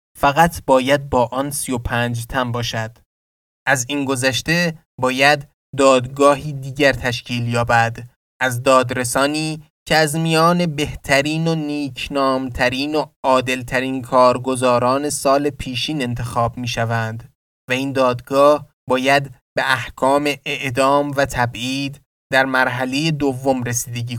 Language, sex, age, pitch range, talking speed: Persian, male, 20-39, 120-140 Hz, 115 wpm